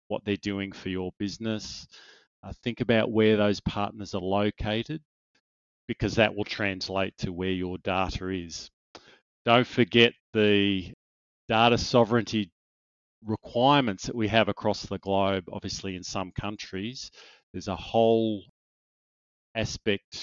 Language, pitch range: English, 95-110 Hz